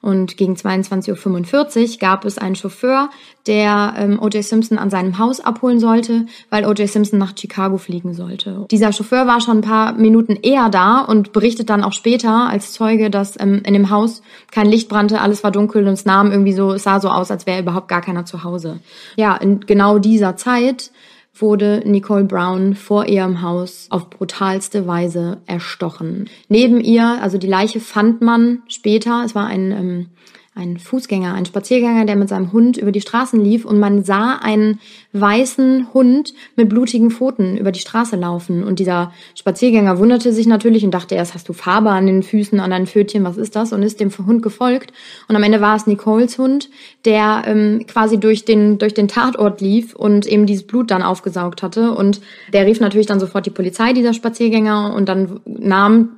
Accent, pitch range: German, 195-225 Hz